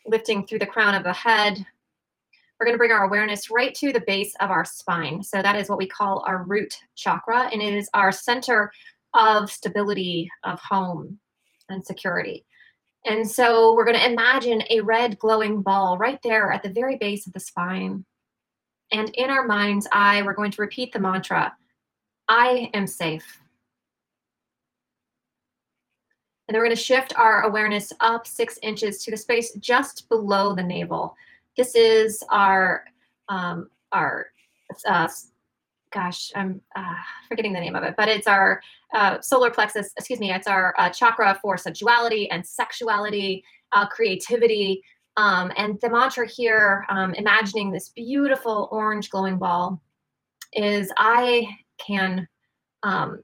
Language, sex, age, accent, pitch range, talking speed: English, female, 20-39, American, 195-235 Hz, 155 wpm